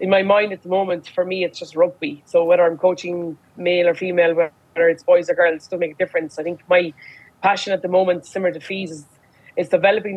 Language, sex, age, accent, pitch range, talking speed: English, female, 20-39, Irish, 170-190 Hz, 240 wpm